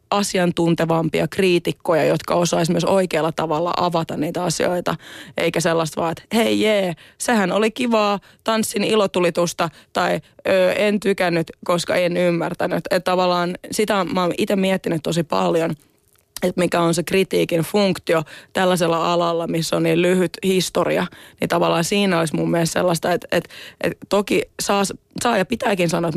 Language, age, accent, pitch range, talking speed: Finnish, 20-39, native, 170-195 Hz, 150 wpm